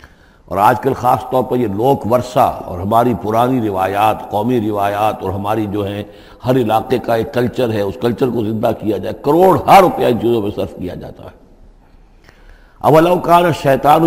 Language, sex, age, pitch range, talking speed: Urdu, male, 50-69, 105-140 Hz, 190 wpm